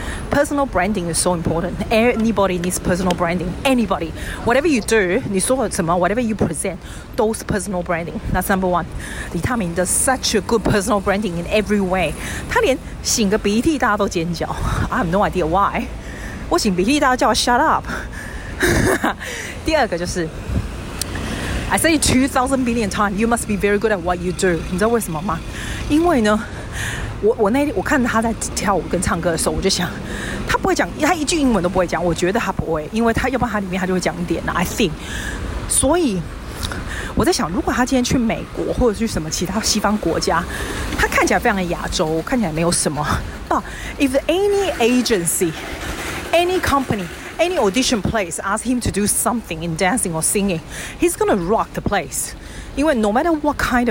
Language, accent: Chinese, native